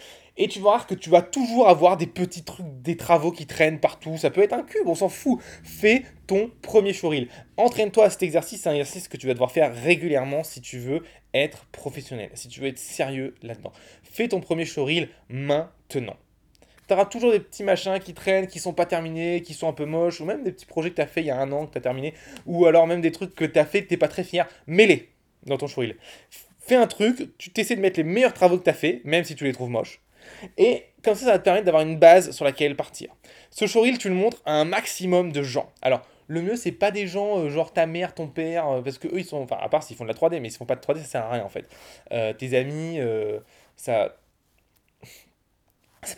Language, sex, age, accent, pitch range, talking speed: French, male, 20-39, French, 145-190 Hz, 260 wpm